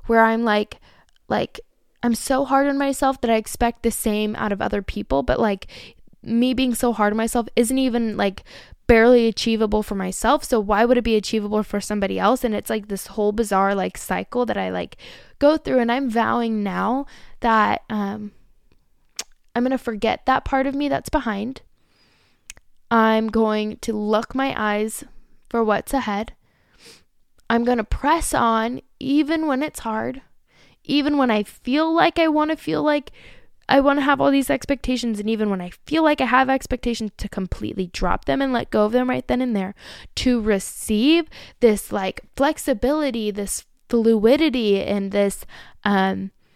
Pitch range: 210-270 Hz